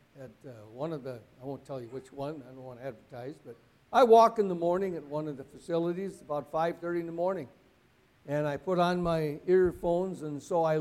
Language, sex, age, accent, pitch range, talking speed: English, male, 60-79, American, 150-215 Hz, 220 wpm